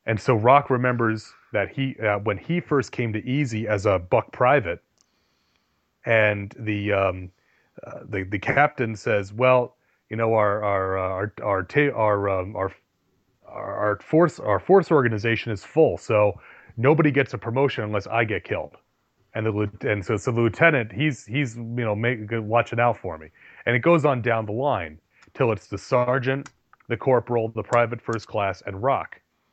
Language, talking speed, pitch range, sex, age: English, 170 wpm, 105-125 Hz, male, 30-49